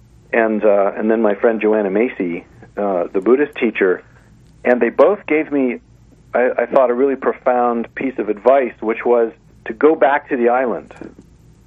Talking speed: 175 wpm